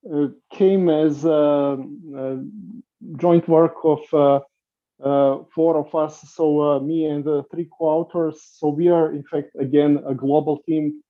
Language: English